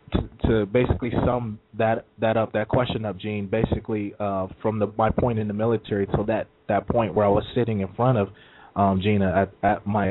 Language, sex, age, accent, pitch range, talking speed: English, male, 20-39, American, 100-110 Hz, 215 wpm